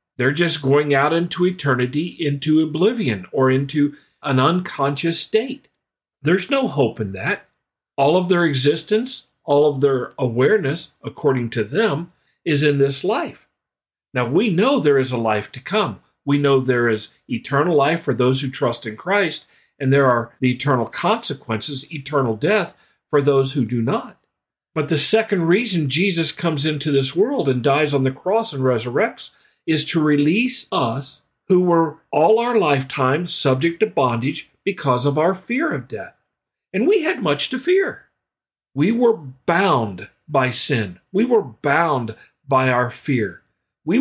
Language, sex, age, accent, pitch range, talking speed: English, male, 50-69, American, 130-185 Hz, 160 wpm